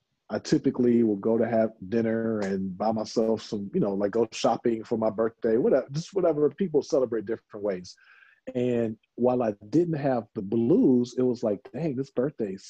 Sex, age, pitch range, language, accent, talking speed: male, 40-59, 110-140 Hz, English, American, 185 wpm